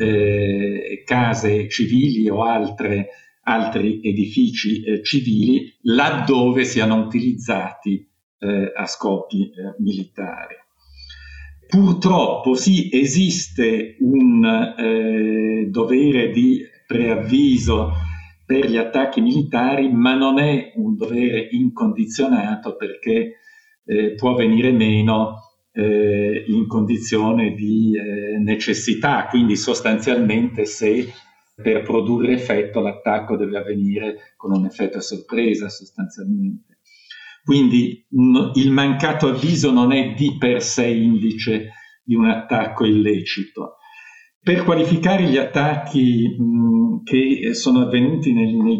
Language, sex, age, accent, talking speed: Italian, male, 50-69, native, 100 wpm